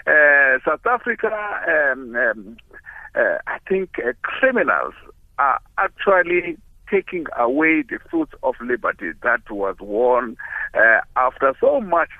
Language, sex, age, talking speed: English, male, 60-79, 120 wpm